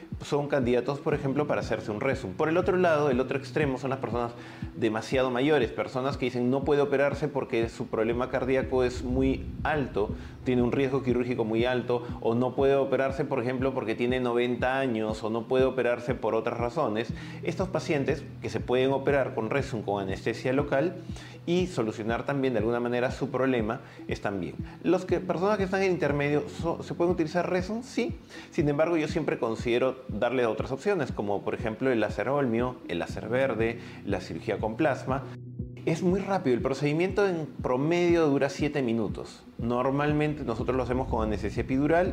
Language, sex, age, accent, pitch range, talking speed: Spanish, male, 30-49, Argentinian, 120-150 Hz, 180 wpm